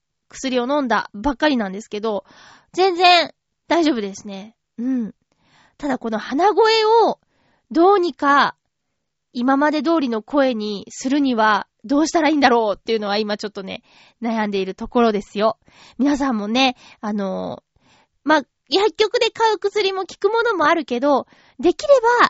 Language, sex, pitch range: Japanese, female, 220-325 Hz